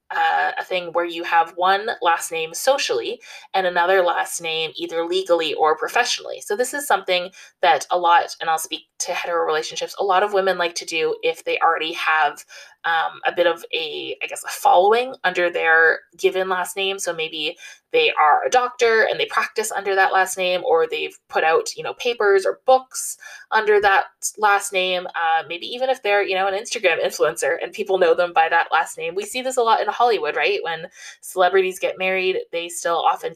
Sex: female